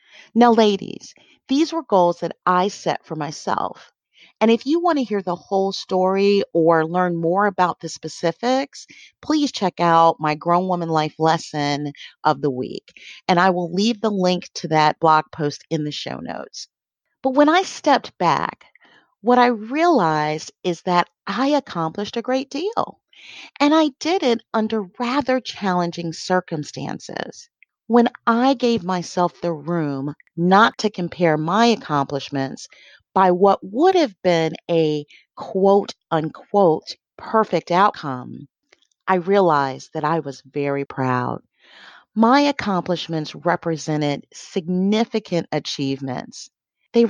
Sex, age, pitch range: female, 40-59, 160-235 Hz